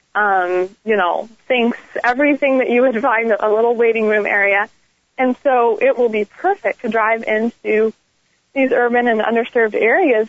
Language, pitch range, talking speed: English, 220-260 Hz, 165 wpm